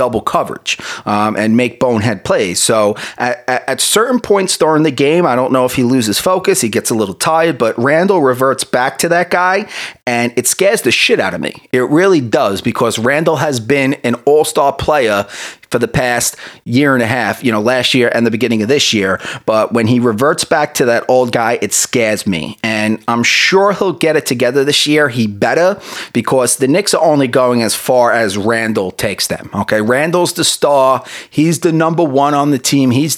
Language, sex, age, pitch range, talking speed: English, male, 30-49, 110-150 Hz, 210 wpm